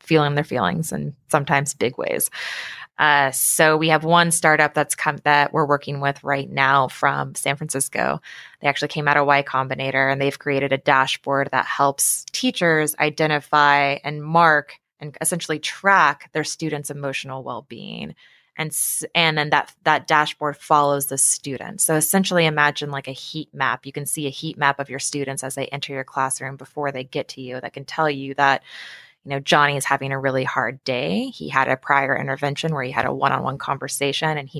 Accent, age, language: American, 20-39, English